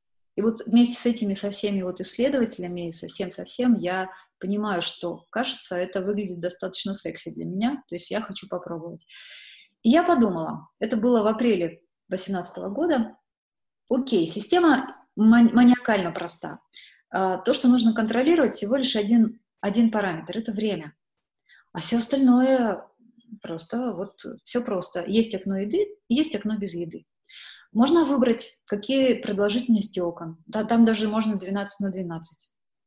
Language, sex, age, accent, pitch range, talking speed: Russian, female, 20-39, native, 185-245 Hz, 140 wpm